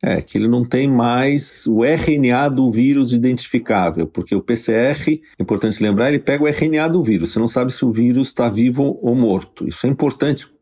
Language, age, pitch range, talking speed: Portuguese, 50-69, 105-145 Hz, 205 wpm